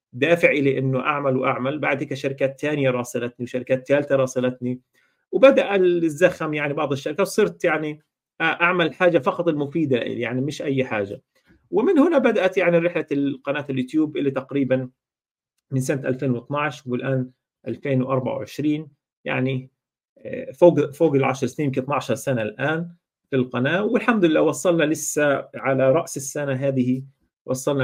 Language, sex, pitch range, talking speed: Arabic, male, 130-150 Hz, 130 wpm